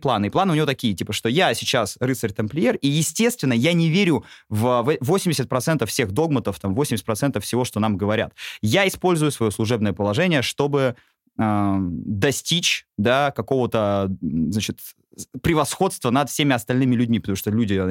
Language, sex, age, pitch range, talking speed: Russian, male, 20-39, 110-155 Hz, 145 wpm